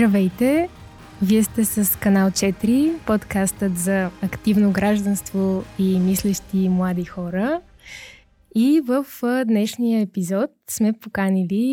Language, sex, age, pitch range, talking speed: Bulgarian, female, 20-39, 190-230 Hz, 100 wpm